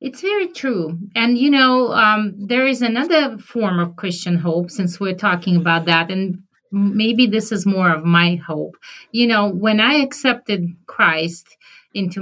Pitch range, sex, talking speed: 175-220 Hz, female, 165 wpm